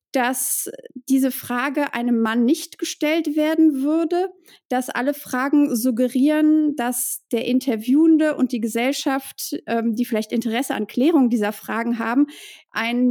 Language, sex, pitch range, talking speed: German, female, 235-290 Hz, 135 wpm